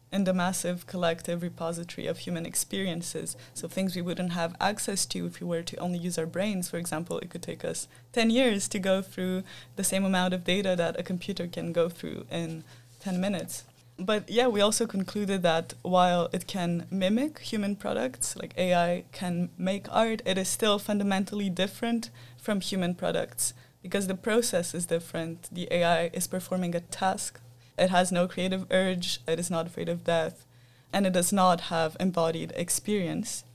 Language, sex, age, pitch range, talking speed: English, female, 20-39, 165-195 Hz, 180 wpm